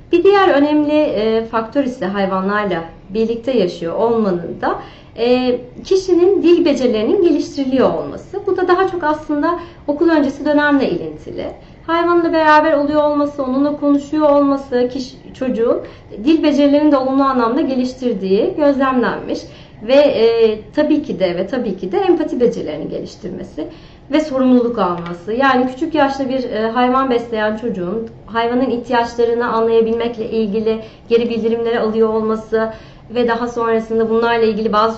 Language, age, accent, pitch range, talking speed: Turkish, 30-49, native, 220-285 Hz, 130 wpm